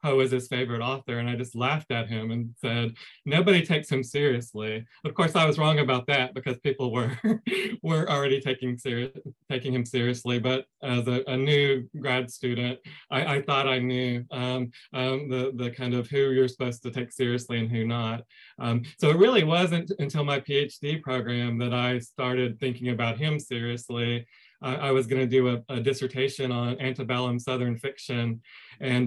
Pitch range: 125-135 Hz